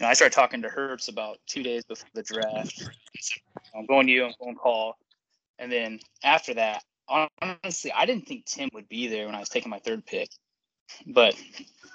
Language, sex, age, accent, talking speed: English, male, 20-39, American, 200 wpm